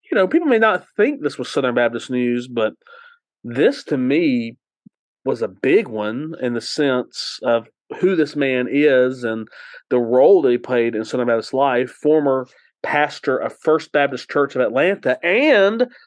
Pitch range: 125-170 Hz